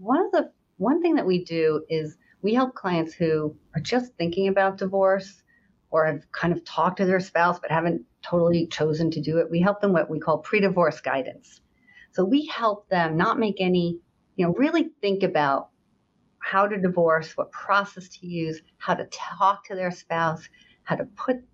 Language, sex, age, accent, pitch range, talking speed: English, female, 50-69, American, 155-195 Hz, 190 wpm